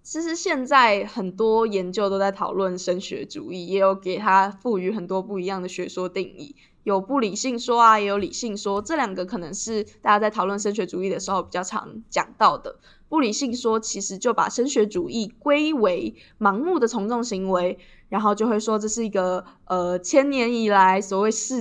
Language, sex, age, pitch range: Chinese, female, 10-29, 195-235 Hz